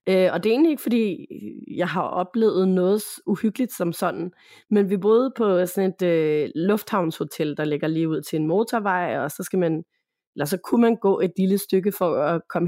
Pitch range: 165-210 Hz